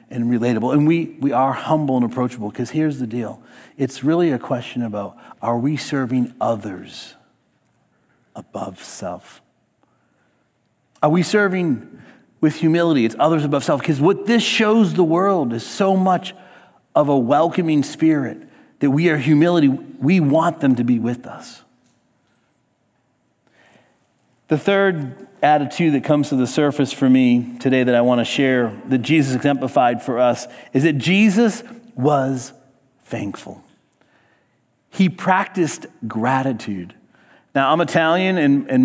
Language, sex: English, male